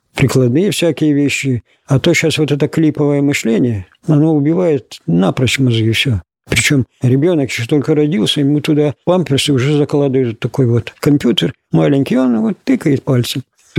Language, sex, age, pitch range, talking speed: Russian, male, 50-69, 125-160 Hz, 150 wpm